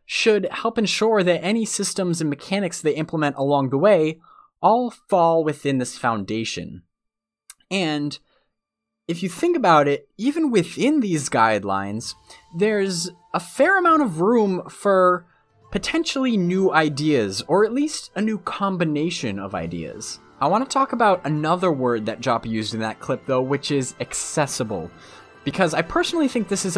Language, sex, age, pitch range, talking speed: English, male, 20-39, 140-210 Hz, 155 wpm